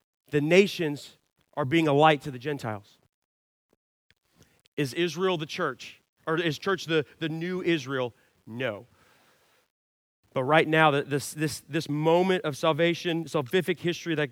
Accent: American